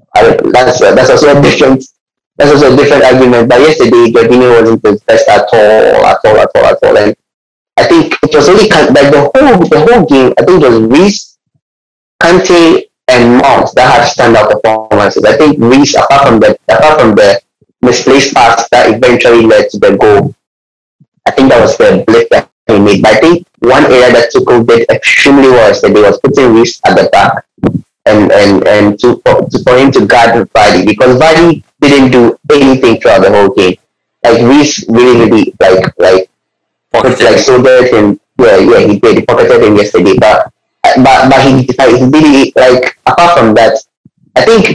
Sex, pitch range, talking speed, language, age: male, 120-170 Hz, 190 wpm, English, 30-49